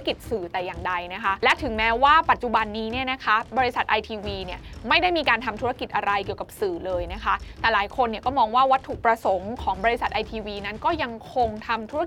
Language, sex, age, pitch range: Thai, female, 20-39, 205-275 Hz